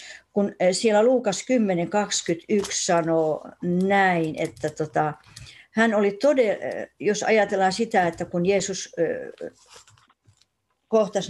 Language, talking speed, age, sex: Finnish, 95 wpm, 60-79, female